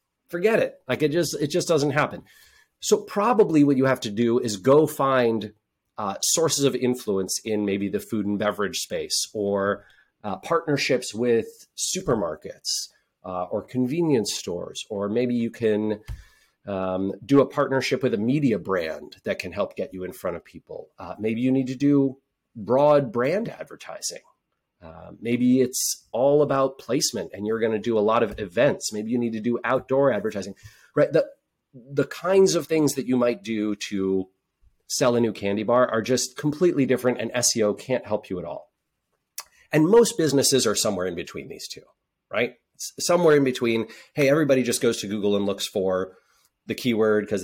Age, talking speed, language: 30-49, 180 wpm, English